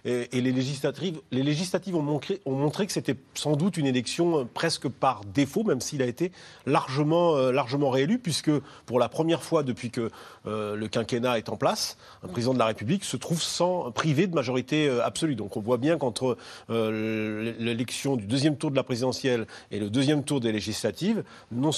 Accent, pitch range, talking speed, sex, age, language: French, 120-155 Hz, 185 wpm, male, 40-59, French